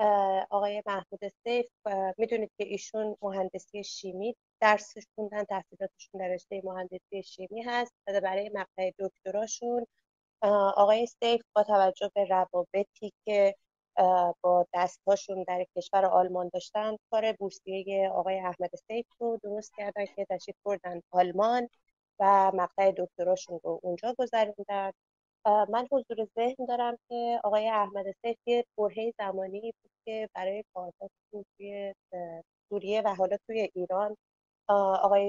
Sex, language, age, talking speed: female, Persian, 30-49, 120 wpm